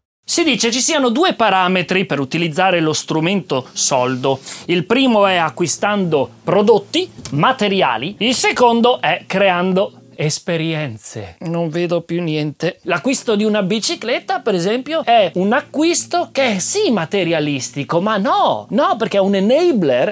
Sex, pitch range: male, 160-245 Hz